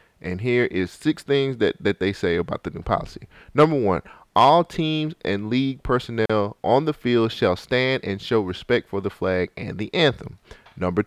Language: English